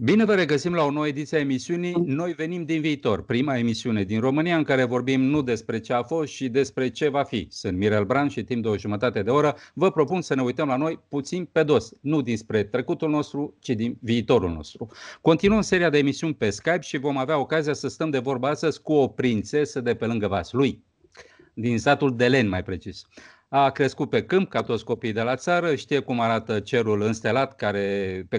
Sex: male